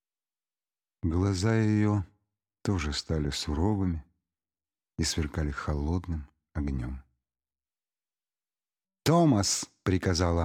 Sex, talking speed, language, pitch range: male, 65 wpm, Russian, 80-110 Hz